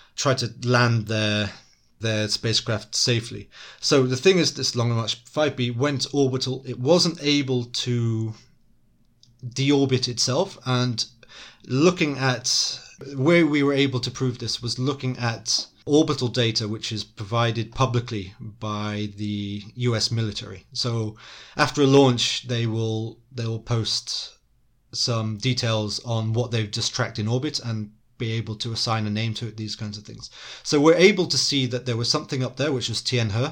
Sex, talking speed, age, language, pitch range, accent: male, 165 wpm, 30-49, English, 115-130 Hz, British